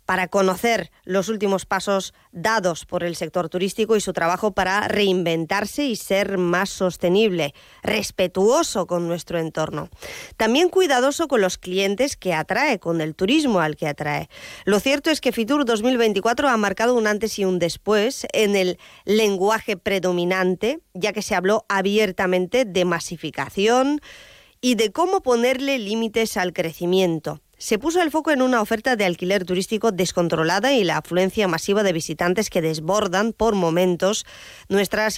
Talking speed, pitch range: 150 wpm, 180-225 Hz